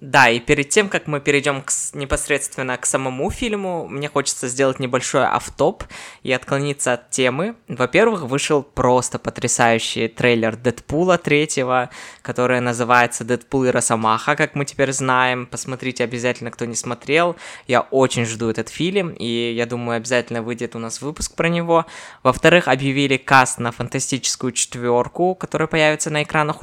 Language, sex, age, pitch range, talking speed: Russian, female, 20-39, 120-145 Hz, 150 wpm